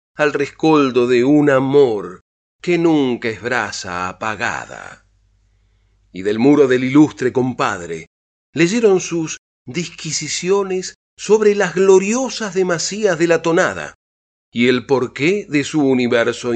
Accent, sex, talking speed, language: Argentinian, male, 115 wpm, Spanish